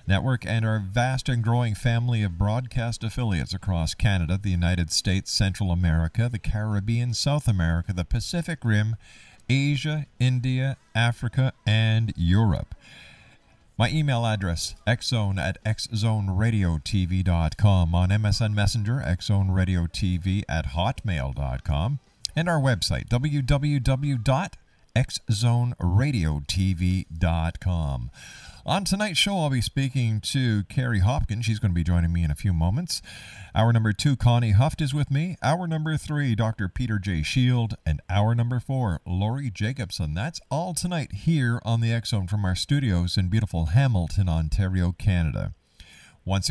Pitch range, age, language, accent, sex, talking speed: 95-125 Hz, 50-69, English, American, male, 130 wpm